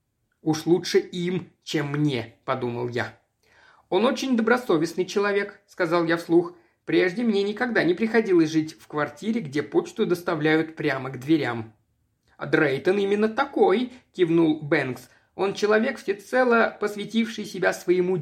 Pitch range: 155-220 Hz